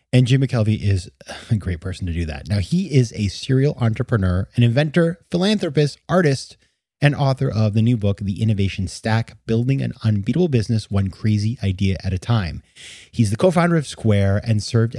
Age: 30-49